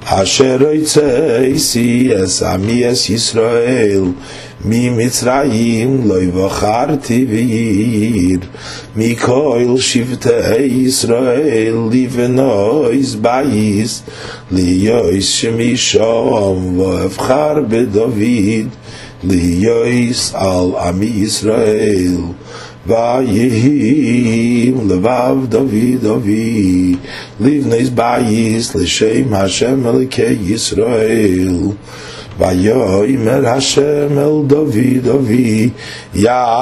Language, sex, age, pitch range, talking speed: English, male, 50-69, 105-125 Hz, 65 wpm